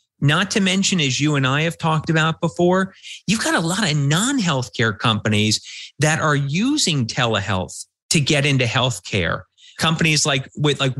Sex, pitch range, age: male, 115-150 Hz, 30-49